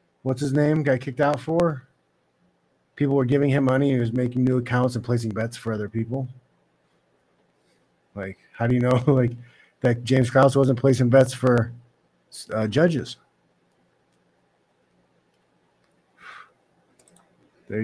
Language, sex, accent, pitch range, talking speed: English, male, American, 120-145 Hz, 130 wpm